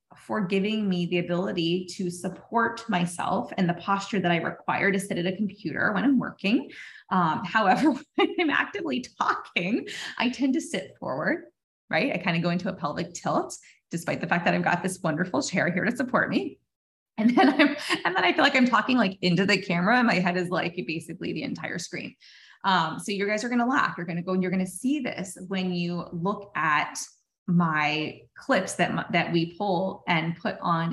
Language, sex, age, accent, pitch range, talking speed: English, female, 20-39, American, 175-220 Hz, 210 wpm